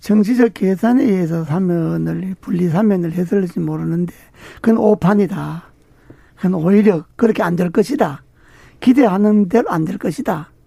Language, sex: Korean, male